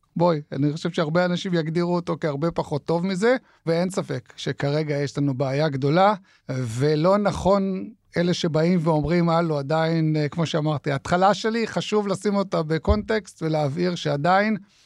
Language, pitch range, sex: Hebrew, 155-190 Hz, male